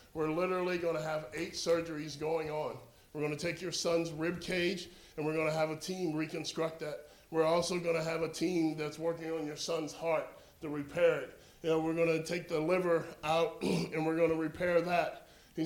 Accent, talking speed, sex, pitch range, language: American, 215 wpm, male, 160-185 Hz, English